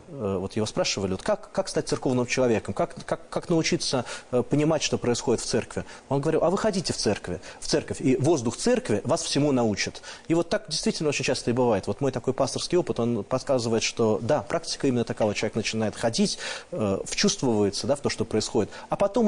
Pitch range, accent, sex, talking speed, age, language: 115-150 Hz, native, male, 200 wpm, 30-49, Russian